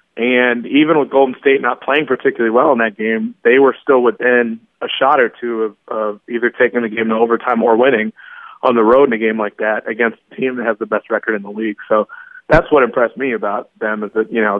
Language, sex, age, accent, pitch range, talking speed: English, male, 30-49, American, 115-125 Hz, 245 wpm